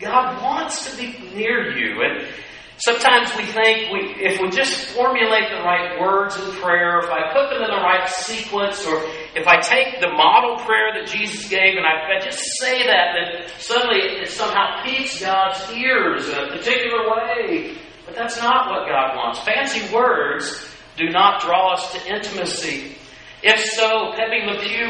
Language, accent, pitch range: English, American, 195-250 Hz